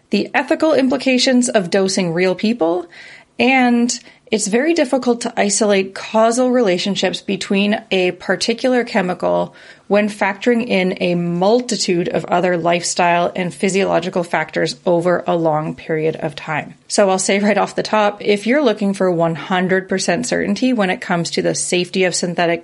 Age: 30-49